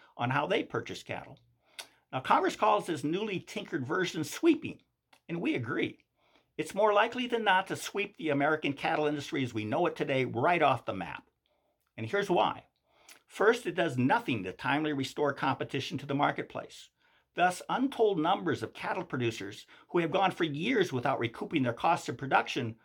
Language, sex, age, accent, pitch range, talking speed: English, male, 50-69, American, 140-225 Hz, 175 wpm